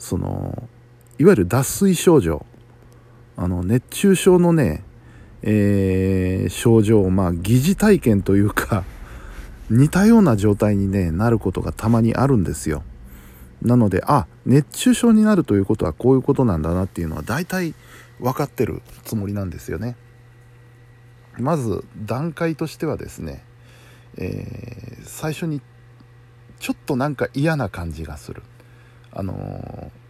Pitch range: 105-125 Hz